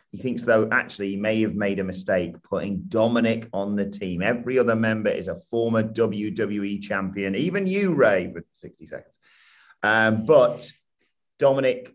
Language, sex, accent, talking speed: English, male, British, 160 wpm